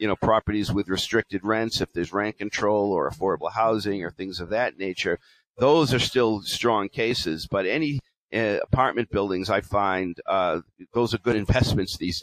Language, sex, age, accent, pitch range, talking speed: English, male, 50-69, American, 100-130 Hz, 175 wpm